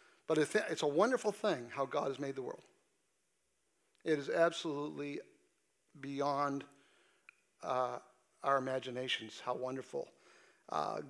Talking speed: 115 wpm